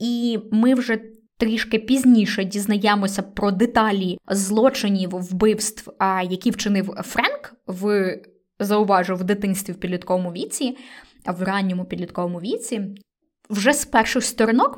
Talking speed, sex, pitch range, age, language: 120 wpm, female, 200-250 Hz, 20-39, Ukrainian